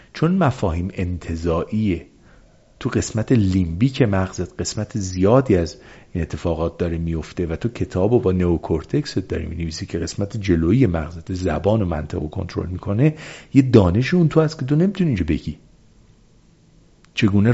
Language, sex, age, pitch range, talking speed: Persian, male, 50-69, 85-125 Hz, 140 wpm